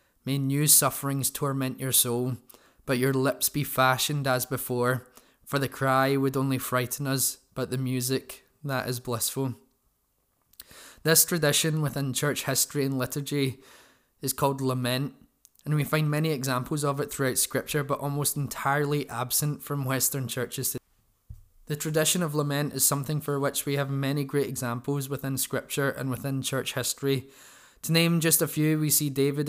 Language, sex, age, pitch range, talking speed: English, male, 20-39, 130-145 Hz, 160 wpm